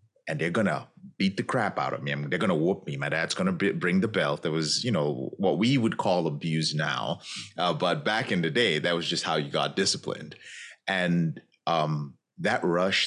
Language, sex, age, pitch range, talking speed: English, male, 30-49, 80-115 Hz, 235 wpm